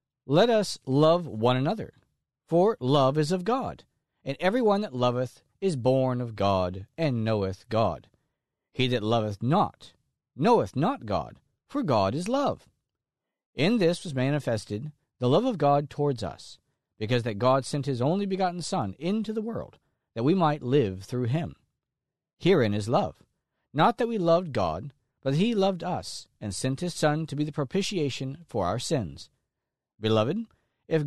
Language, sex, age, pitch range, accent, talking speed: English, male, 50-69, 120-175 Hz, American, 165 wpm